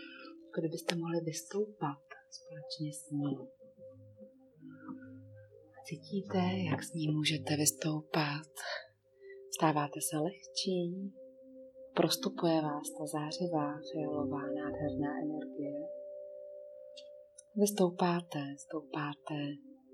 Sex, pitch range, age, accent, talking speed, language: female, 155-245 Hz, 30-49, native, 70 wpm, Czech